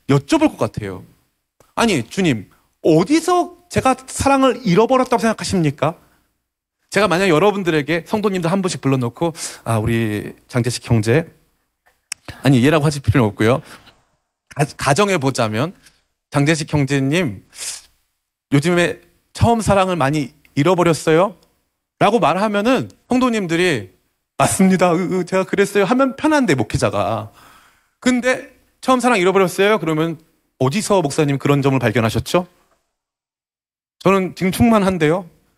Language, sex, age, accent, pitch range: Korean, male, 30-49, native, 130-220 Hz